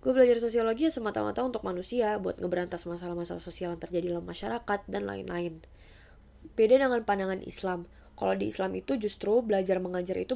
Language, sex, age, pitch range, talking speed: English, female, 20-39, 185-235 Hz, 170 wpm